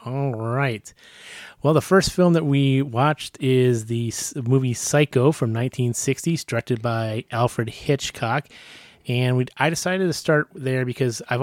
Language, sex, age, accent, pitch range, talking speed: English, male, 30-49, American, 115-130 Hz, 145 wpm